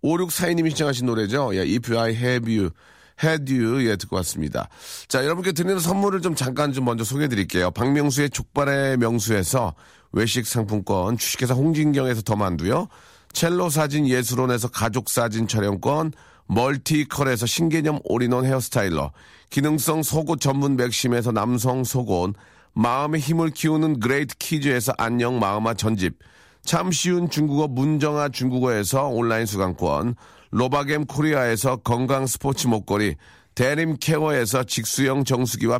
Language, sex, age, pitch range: Korean, male, 40-59, 115-155 Hz